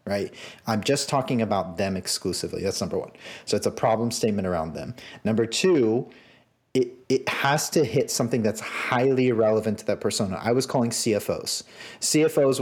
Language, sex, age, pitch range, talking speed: English, male, 30-49, 100-125 Hz, 170 wpm